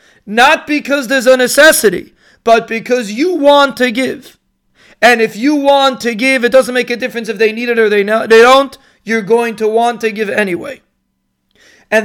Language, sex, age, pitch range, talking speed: English, male, 40-59, 210-255 Hz, 185 wpm